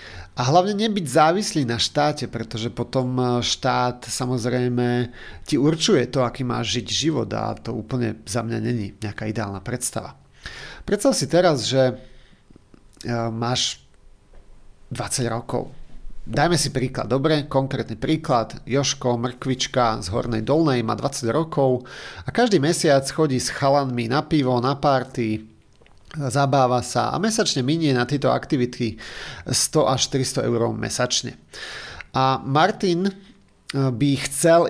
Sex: male